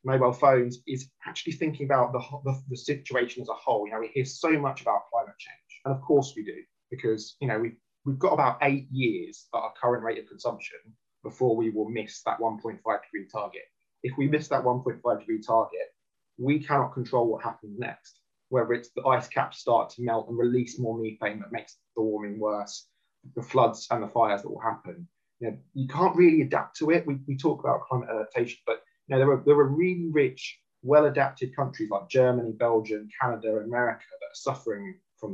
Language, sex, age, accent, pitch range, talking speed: English, male, 20-39, British, 120-150 Hz, 205 wpm